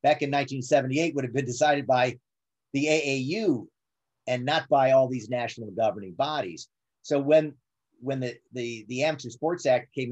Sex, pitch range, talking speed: male, 120-145 Hz, 165 wpm